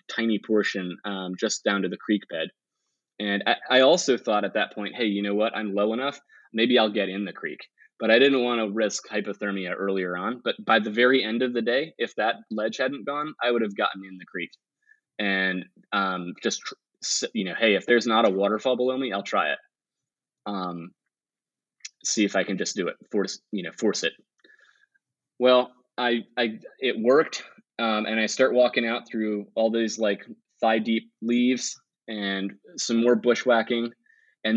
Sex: male